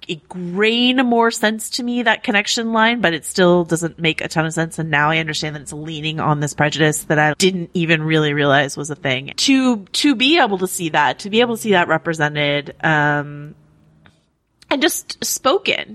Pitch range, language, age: 155-205 Hz, English, 30-49